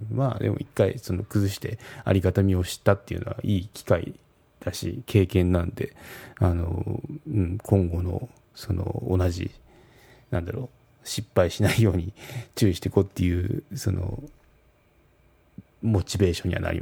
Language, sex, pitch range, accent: Japanese, male, 95-120 Hz, native